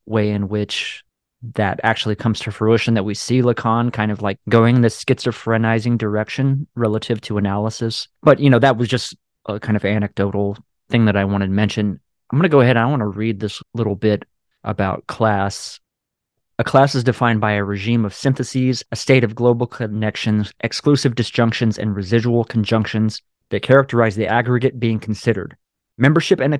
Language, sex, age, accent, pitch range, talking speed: English, male, 30-49, American, 110-125 Hz, 185 wpm